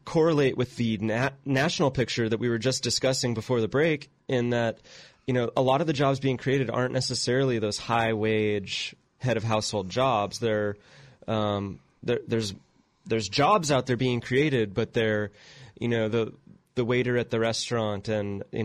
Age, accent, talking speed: 20-39, American, 180 wpm